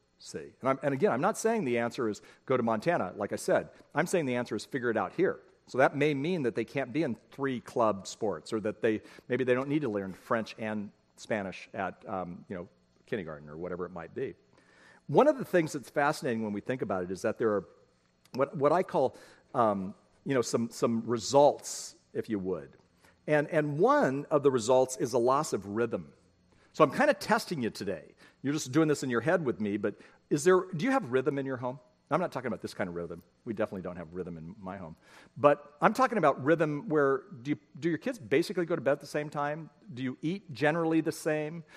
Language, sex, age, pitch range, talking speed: English, male, 50-69, 115-160 Hz, 240 wpm